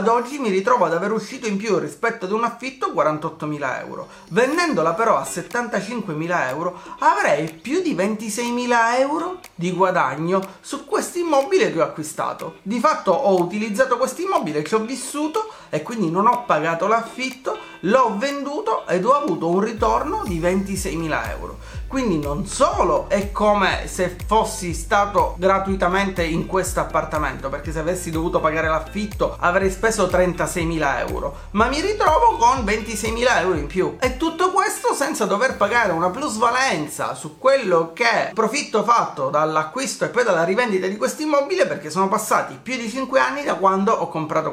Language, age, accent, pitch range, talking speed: Italian, 30-49, native, 180-255 Hz, 165 wpm